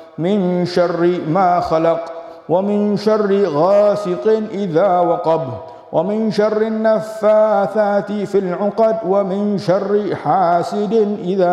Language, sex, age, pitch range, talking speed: Malay, male, 50-69, 165-200 Hz, 95 wpm